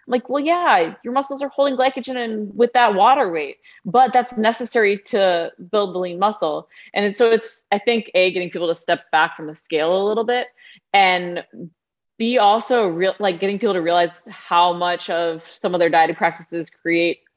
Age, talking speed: 30-49, 195 wpm